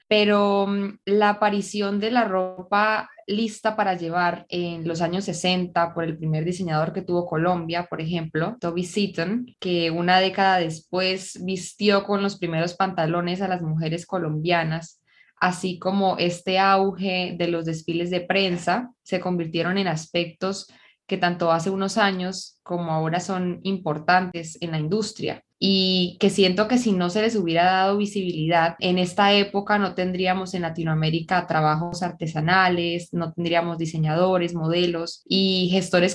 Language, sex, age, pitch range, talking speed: Spanish, female, 10-29, 170-195 Hz, 145 wpm